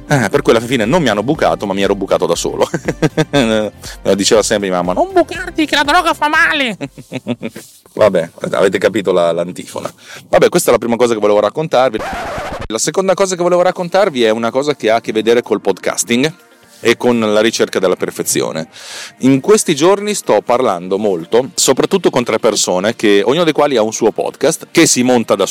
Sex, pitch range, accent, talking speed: male, 95-140 Hz, native, 190 wpm